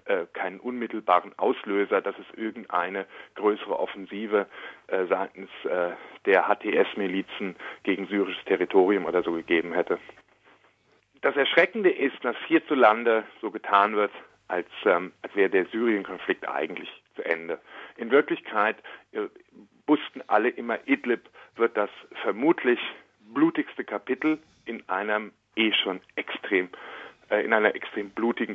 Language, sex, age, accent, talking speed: German, male, 50-69, German, 125 wpm